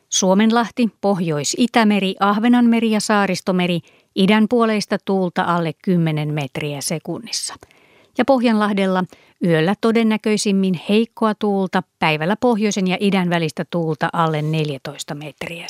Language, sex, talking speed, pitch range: Finnish, female, 105 wpm, 170-220 Hz